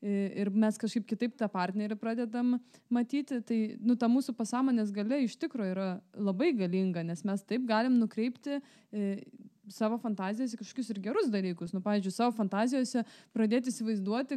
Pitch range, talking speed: 210-255 Hz, 150 wpm